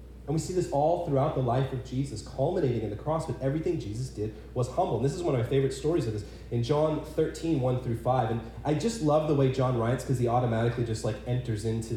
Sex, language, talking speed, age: male, English, 255 wpm, 30-49